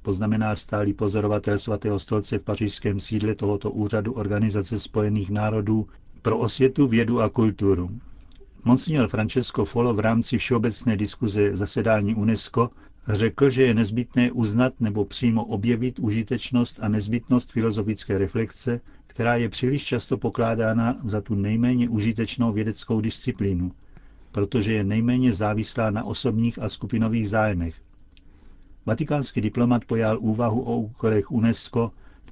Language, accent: Czech, native